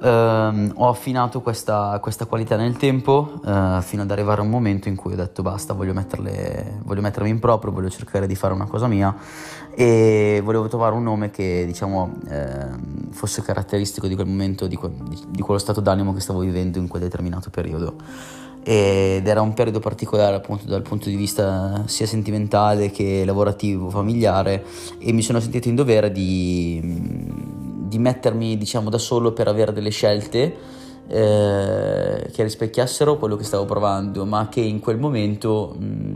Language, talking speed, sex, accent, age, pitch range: Italian, 175 wpm, male, native, 20-39, 95-110 Hz